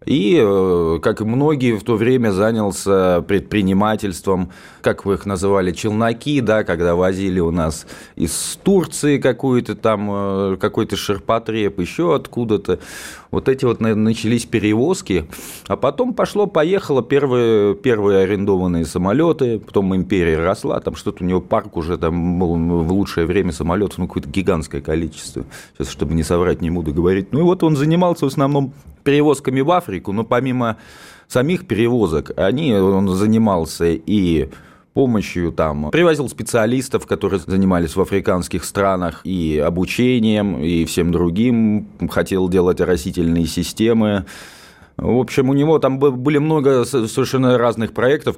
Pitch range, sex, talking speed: 90-125 Hz, male, 135 wpm